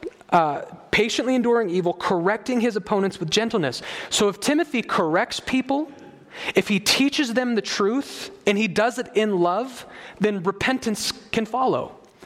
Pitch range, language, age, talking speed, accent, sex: 195-255 Hz, English, 30-49, 145 wpm, American, male